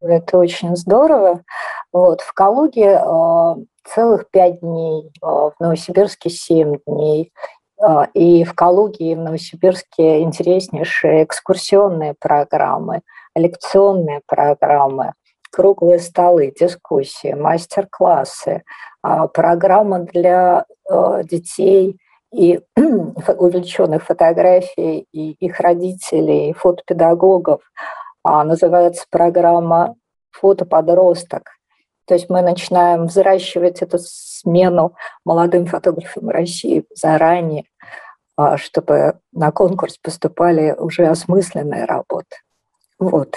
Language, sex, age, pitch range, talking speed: Russian, female, 50-69, 165-190 Hz, 90 wpm